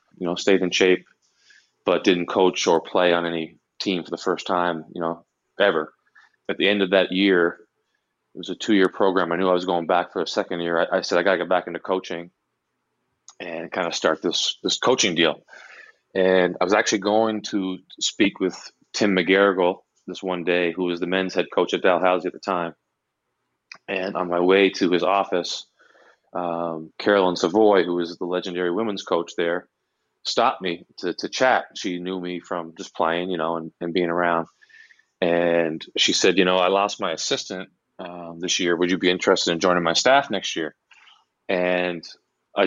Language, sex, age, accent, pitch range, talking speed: English, male, 30-49, American, 85-95 Hz, 200 wpm